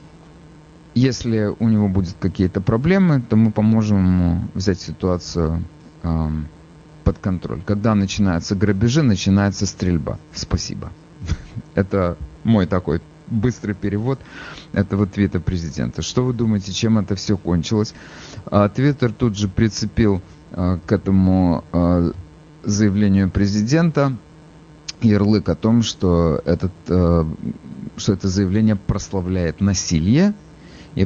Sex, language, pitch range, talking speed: male, English, 90-115 Hz, 110 wpm